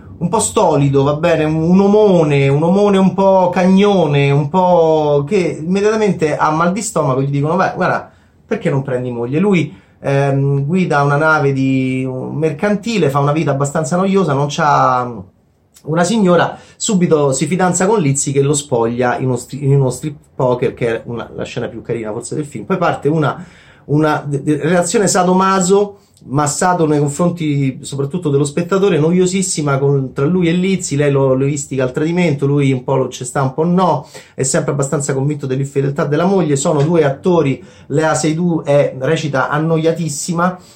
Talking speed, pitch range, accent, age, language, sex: 170 wpm, 140-175 Hz, native, 30-49, Italian, male